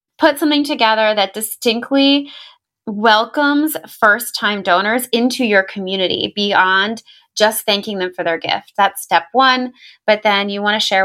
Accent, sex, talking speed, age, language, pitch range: American, female, 145 wpm, 20-39, English, 185-235 Hz